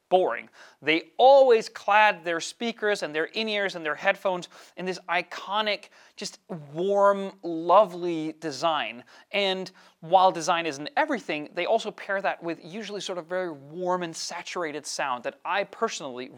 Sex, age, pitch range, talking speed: male, 30-49, 165-220 Hz, 145 wpm